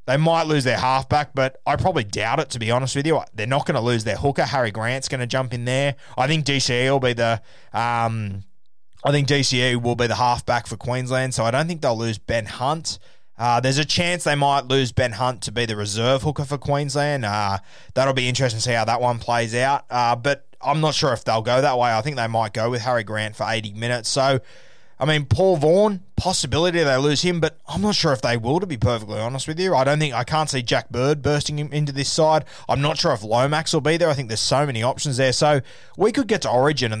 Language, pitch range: English, 115-145 Hz